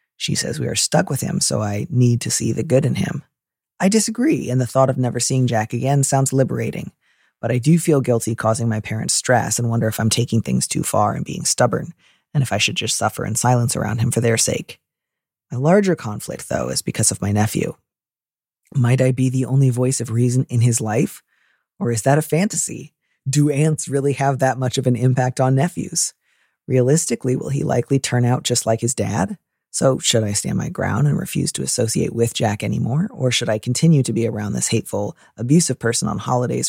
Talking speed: 220 wpm